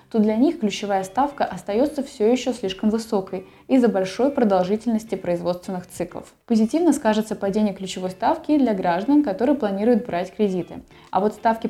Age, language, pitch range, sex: 20-39, Russian, 190-245 Hz, female